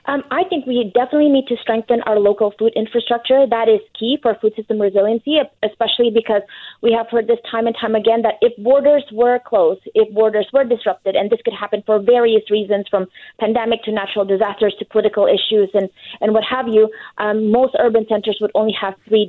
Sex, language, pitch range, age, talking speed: female, English, 215-255 Hz, 20-39, 205 wpm